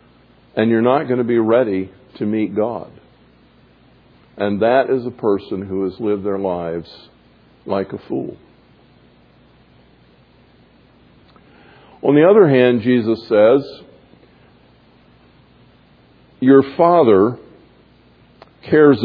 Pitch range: 115-155 Hz